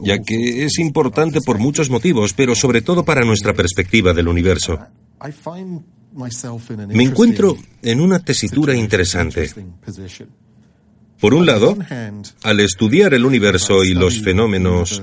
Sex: male